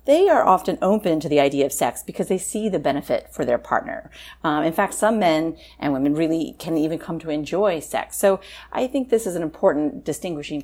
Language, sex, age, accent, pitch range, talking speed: English, female, 40-59, American, 150-190 Hz, 220 wpm